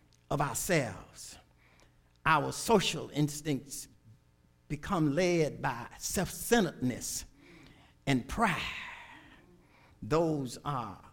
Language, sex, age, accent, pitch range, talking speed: English, male, 50-69, American, 110-155 Hz, 70 wpm